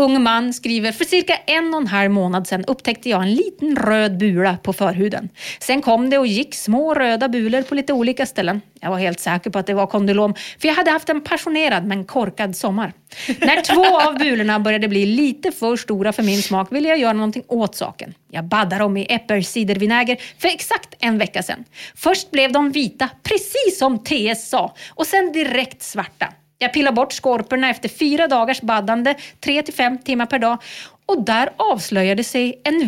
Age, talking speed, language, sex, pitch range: 30-49, 195 wpm, English, female, 200-285 Hz